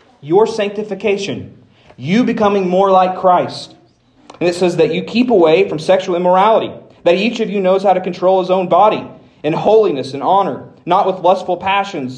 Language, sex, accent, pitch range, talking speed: English, male, American, 150-200 Hz, 175 wpm